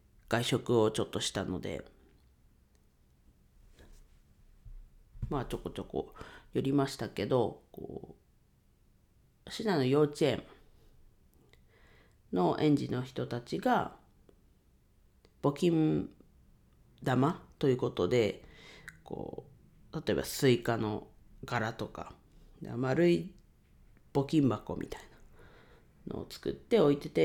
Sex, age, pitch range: female, 40-59, 90-140 Hz